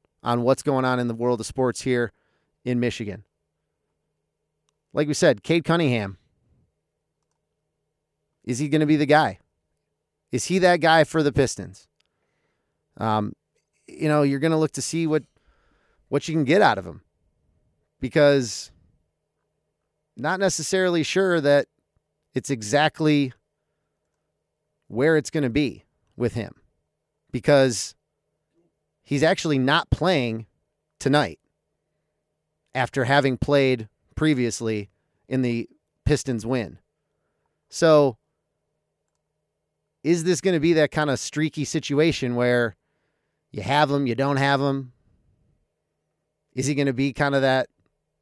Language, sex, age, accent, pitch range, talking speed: English, male, 30-49, American, 130-155 Hz, 130 wpm